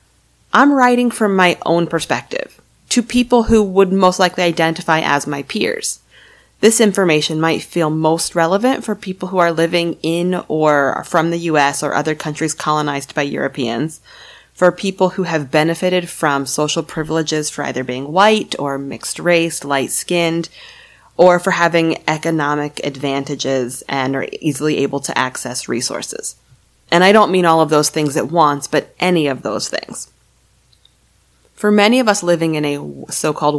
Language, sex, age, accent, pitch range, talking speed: English, female, 30-49, American, 150-195 Hz, 160 wpm